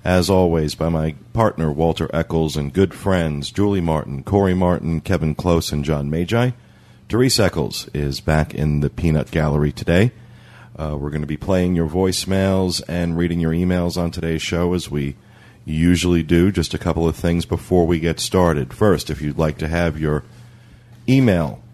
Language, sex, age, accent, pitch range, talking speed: English, male, 40-59, American, 75-90 Hz, 175 wpm